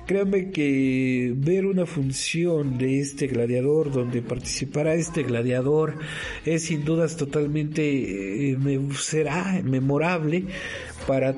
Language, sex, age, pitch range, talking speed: Spanish, male, 50-69, 135-160 Hz, 100 wpm